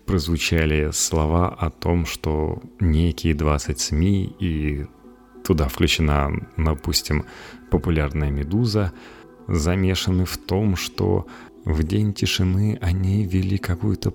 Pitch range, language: 80-95 Hz, Russian